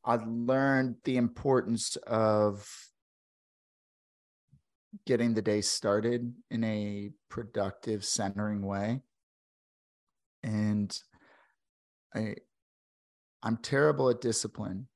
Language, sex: English, male